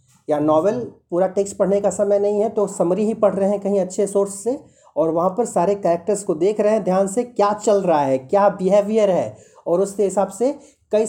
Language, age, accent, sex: Hindi, 30-49, native, male